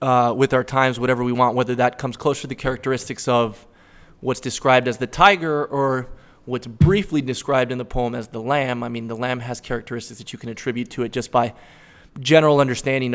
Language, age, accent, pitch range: English, 20-39, American, 120-140 Hz